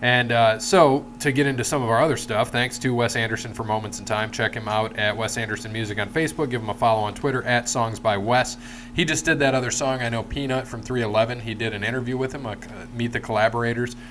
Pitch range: 110-125 Hz